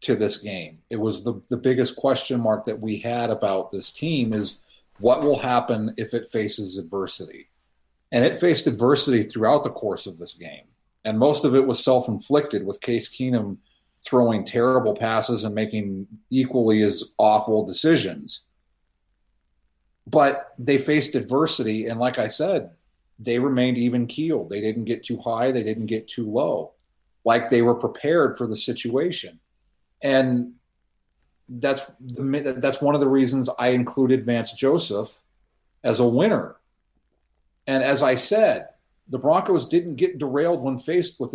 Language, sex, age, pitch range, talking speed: English, male, 40-59, 105-140 Hz, 160 wpm